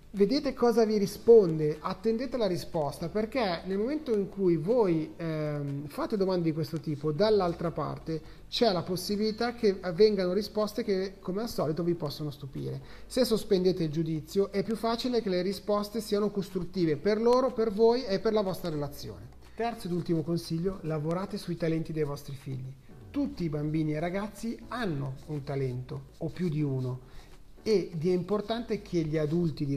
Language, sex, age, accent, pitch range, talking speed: Italian, male, 30-49, native, 155-215 Hz, 170 wpm